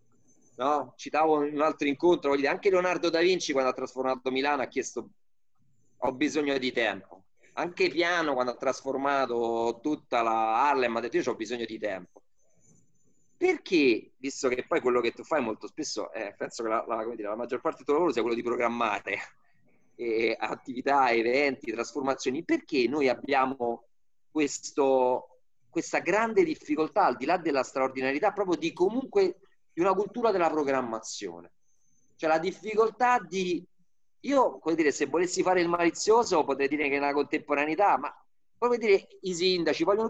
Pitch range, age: 125-180 Hz, 30-49